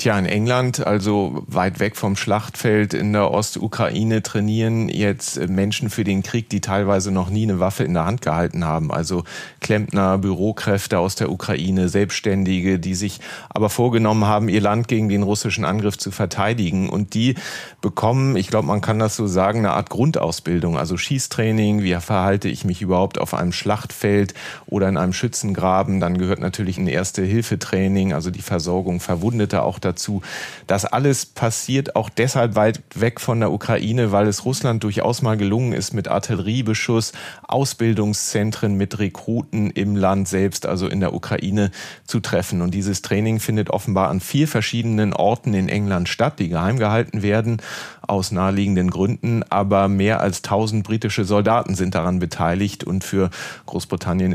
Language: German